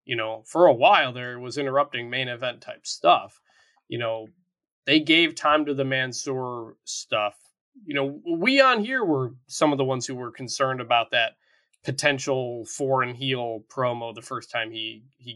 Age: 20-39